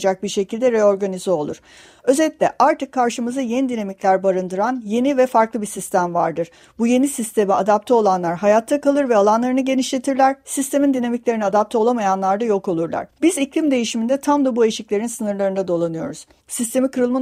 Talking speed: 155 wpm